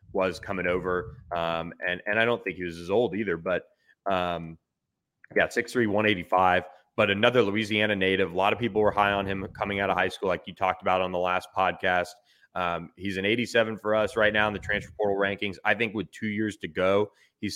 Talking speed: 220 wpm